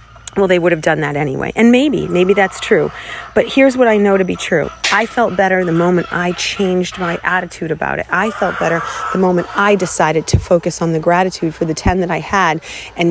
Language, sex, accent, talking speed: English, female, American, 230 wpm